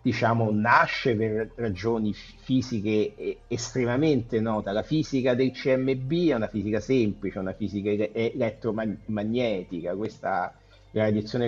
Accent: native